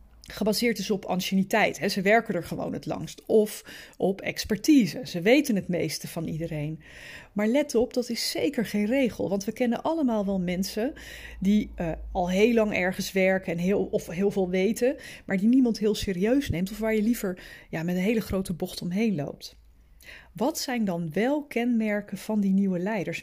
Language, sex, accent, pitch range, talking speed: Dutch, female, Dutch, 190-245 Hz, 190 wpm